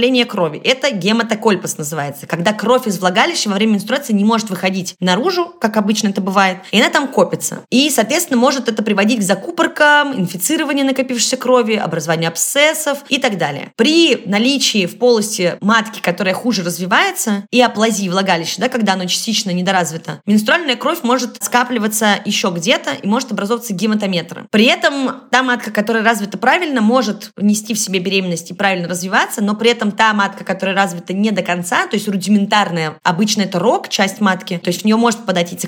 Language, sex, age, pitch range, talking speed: Russian, female, 20-39, 195-250 Hz, 175 wpm